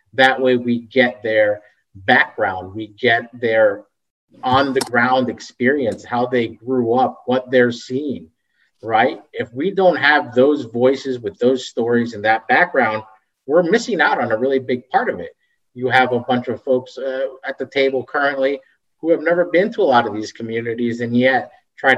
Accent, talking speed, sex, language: American, 185 wpm, male, English